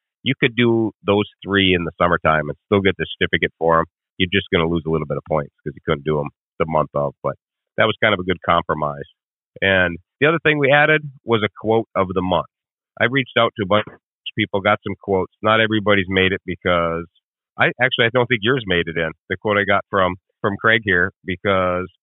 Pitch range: 90-110 Hz